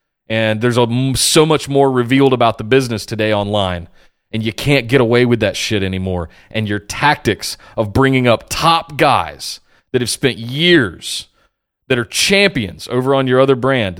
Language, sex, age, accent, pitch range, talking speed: English, male, 30-49, American, 105-140 Hz, 170 wpm